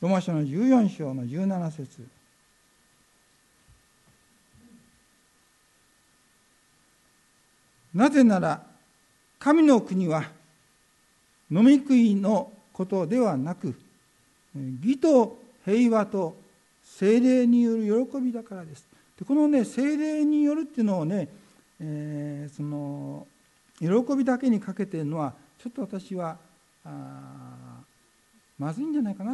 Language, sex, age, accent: Japanese, male, 60-79, native